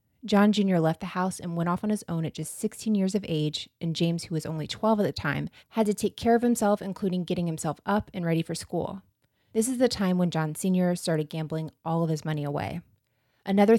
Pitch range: 160-205 Hz